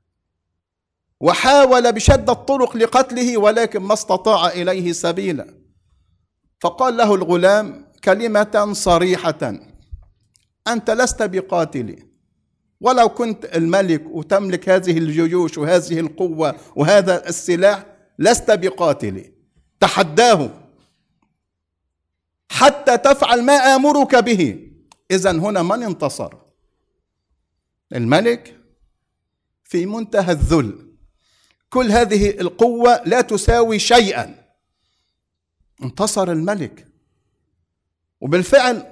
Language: English